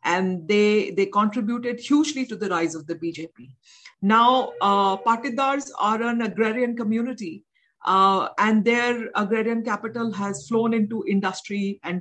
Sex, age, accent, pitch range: female, 50-69, Indian, 180-225 Hz